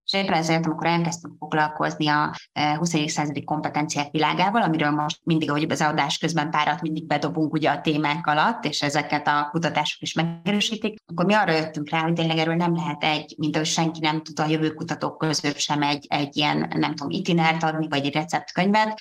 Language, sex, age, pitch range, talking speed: Hungarian, female, 20-39, 150-165 Hz, 190 wpm